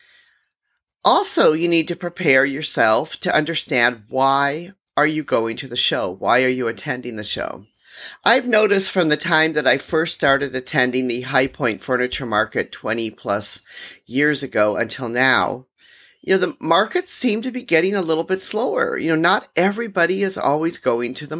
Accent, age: American, 40-59